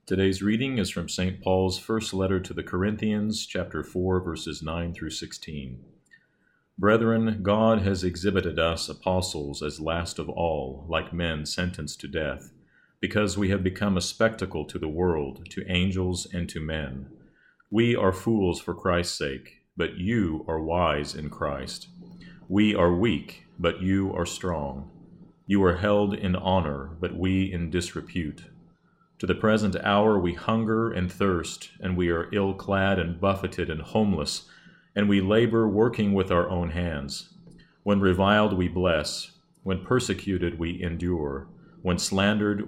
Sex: male